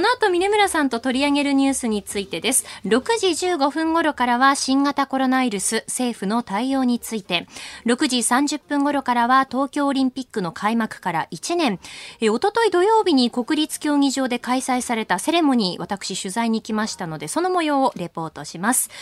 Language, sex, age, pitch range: Japanese, female, 20-39, 220-300 Hz